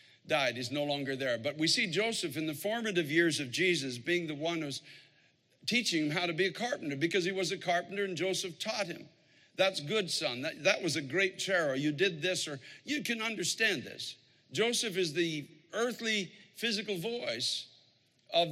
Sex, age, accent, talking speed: male, 60-79, American, 190 wpm